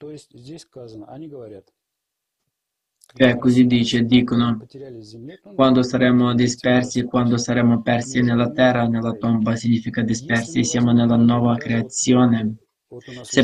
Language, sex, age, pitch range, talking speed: Italian, male, 20-39, 120-130 Hz, 100 wpm